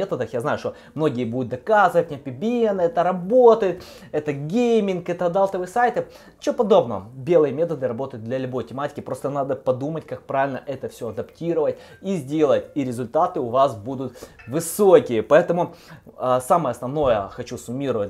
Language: Russian